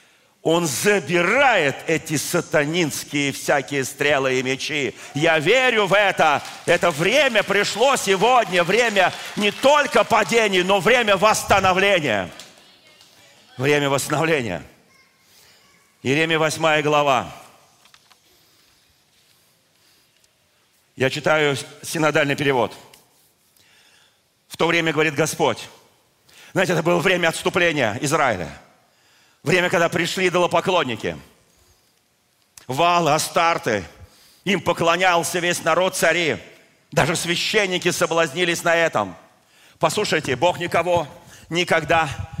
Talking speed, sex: 90 wpm, male